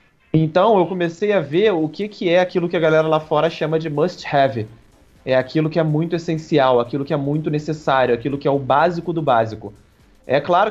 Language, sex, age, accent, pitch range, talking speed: Portuguese, male, 20-39, Brazilian, 135-170 Hz, 215 wpm